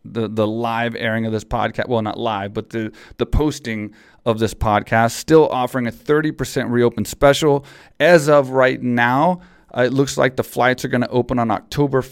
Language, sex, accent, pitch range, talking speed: English, male, American, 115-135 Hz, 200 wpm